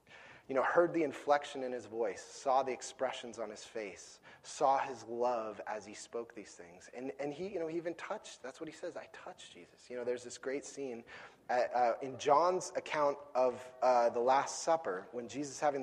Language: English